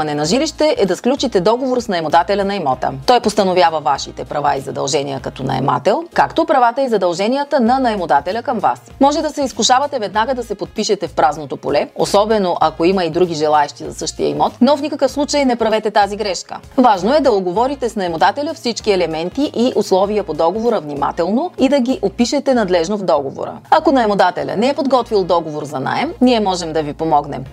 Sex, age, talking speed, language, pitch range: female, 30-49, 190 wpm, Bulgarian, 170-245 Hz